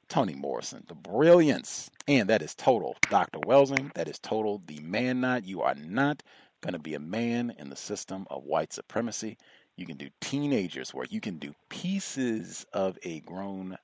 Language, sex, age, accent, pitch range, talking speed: English, male, 40-59, American, 95-130 Hz, 180 wpm